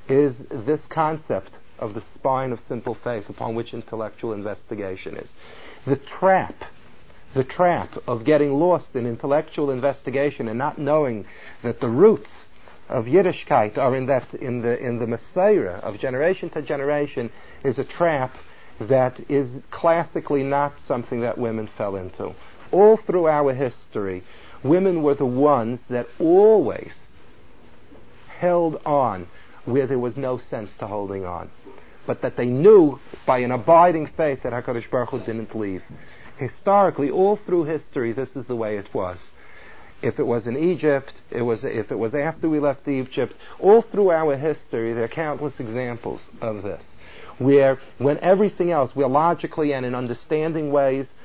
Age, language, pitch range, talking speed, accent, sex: 50-69, English, 120-160 Hz, 160 wpm, American, male